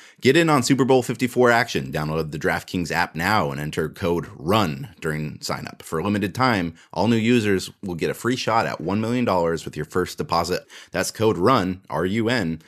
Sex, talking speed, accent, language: male, 195 wpm, American, English